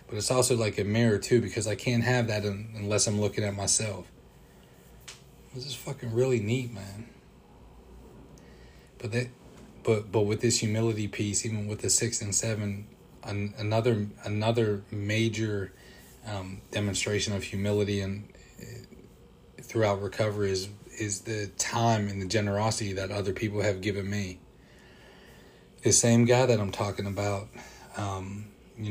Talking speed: 150 wpm